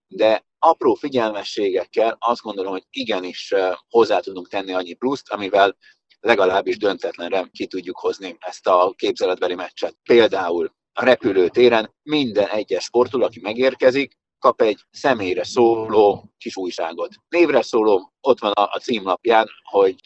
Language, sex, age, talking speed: Hungarian, male, 50-69, 130 wpm